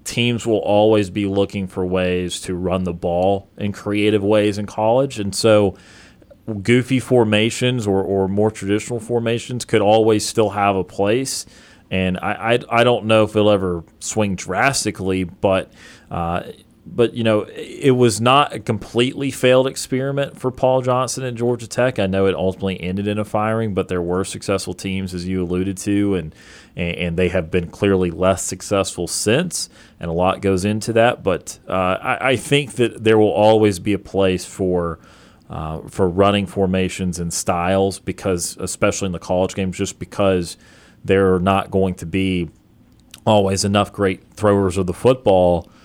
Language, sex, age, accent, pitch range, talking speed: English, male, 30-49, American, 95-110 Hz, 175 wpm